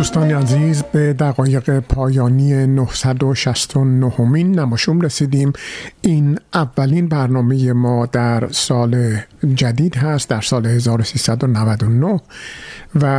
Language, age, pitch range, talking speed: Persian, 50-69, 130-150 Hz, 90 wpm